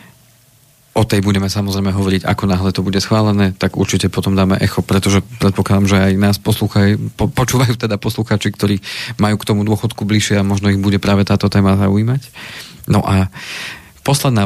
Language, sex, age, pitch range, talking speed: Slovak, male, 40-59, 100-110 Hz, 170 wpm